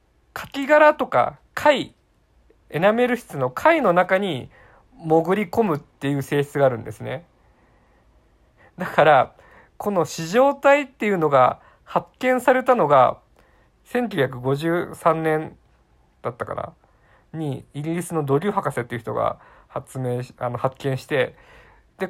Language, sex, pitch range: Japanese, male, 125-175 Hz